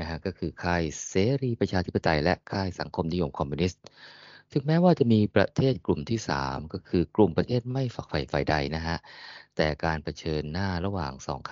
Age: 20-39